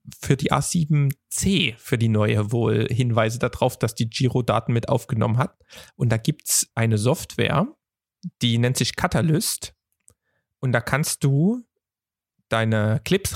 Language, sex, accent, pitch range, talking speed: German, male, German, 115-150 Hz, 140 wpm